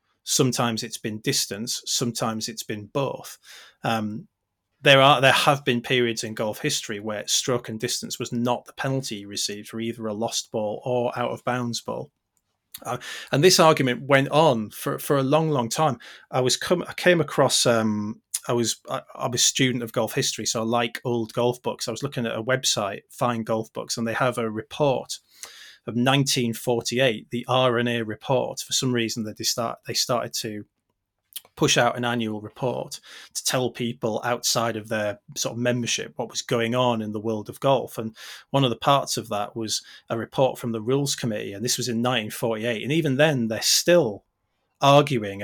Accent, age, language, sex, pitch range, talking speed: British, 30-49, English, male, 115-130 Hz, 195 wpm